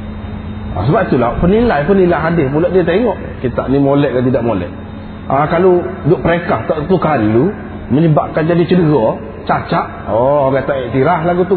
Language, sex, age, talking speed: Malay, male, 30-49, 155 wpm